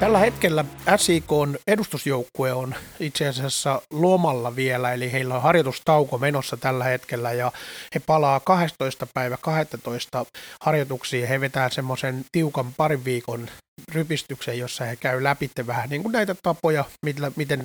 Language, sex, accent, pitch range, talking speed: Finnish, male, native, 125-150 Hz, 135 wpm